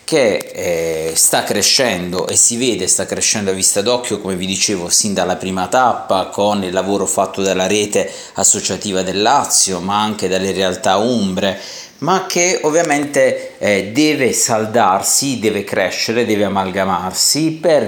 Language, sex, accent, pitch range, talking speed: Italian, male, native, 95-145 Hz, 150 wpm